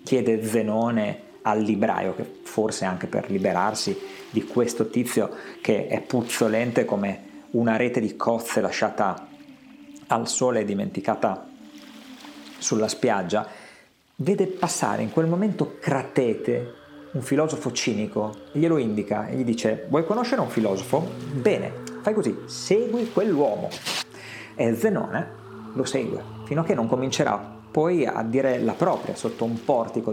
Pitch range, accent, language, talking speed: 110-155 Hz, native, Italian, 135 wpm